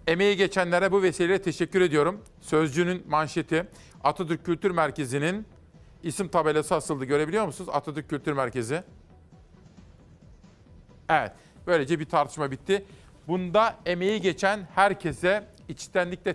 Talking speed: 105 wpm